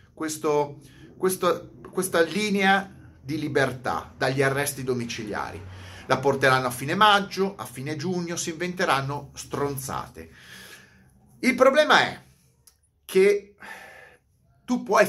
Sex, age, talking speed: male, 30-49, 105 wpm